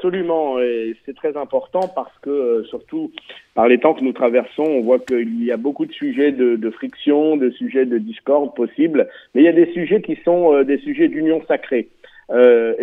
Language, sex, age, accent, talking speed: French, male, 50-69, French, 210 wpm